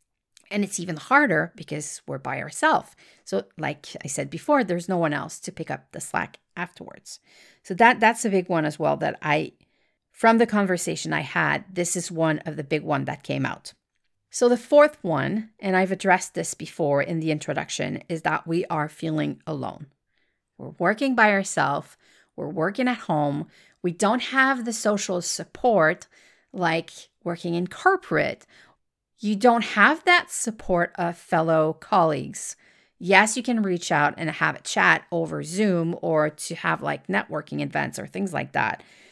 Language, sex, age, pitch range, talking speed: English, female, 40-59, 165-235 Hz, 175 wpm